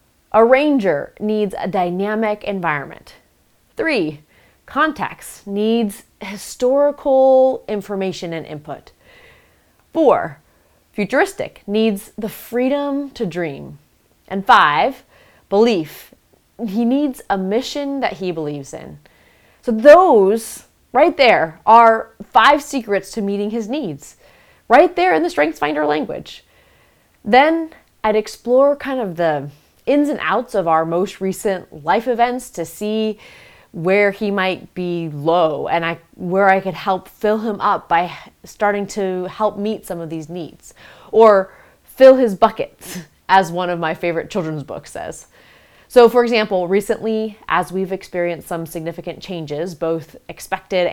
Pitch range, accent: 175-230 Hz, American